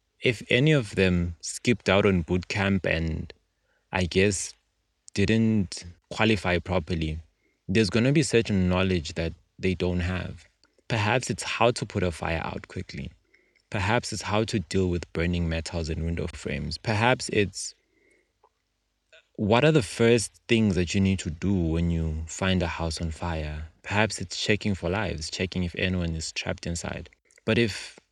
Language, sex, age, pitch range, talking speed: English, male, 20-39, 85-110 Hz, 165 wpm